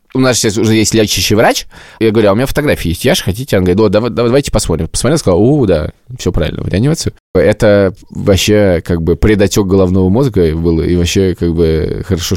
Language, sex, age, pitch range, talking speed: Russian, male, 20-39, 95-120 Hz, 200 wpm